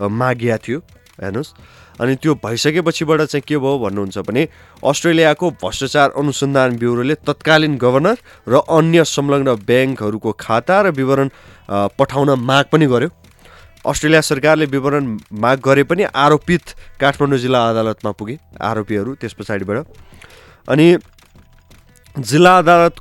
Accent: Indian